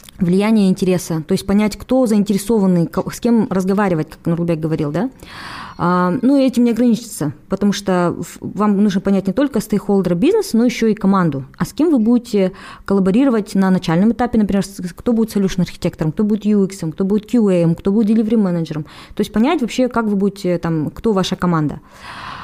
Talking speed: 175 wpm